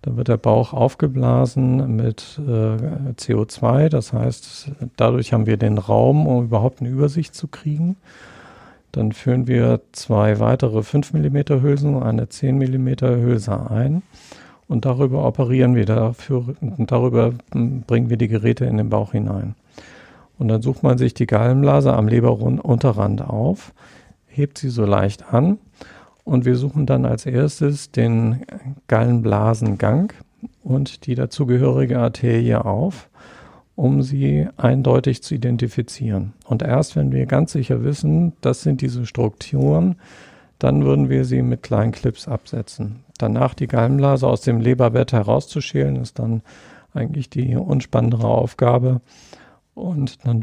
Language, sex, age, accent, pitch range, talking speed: German, male, 50-69, German, 115-135 Hz, 135 wpm